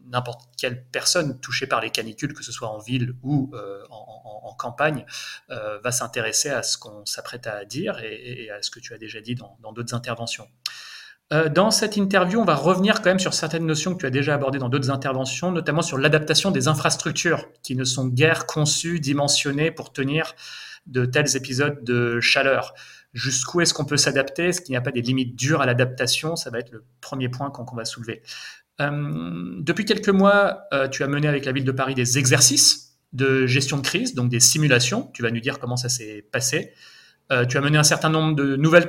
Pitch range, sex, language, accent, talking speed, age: 125-155 Hz, male, French, French, 215 wpm, 30-49